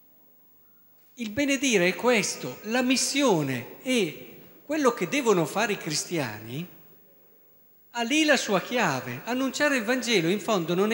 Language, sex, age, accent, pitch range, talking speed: Italian, male, 50-69, native, 160-235 Hz, 130 wpm